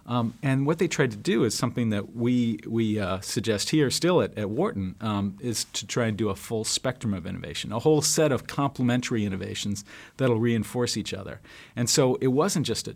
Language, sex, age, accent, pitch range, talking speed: English, male, 50-69, American, 105-125 Hz, 220 wpm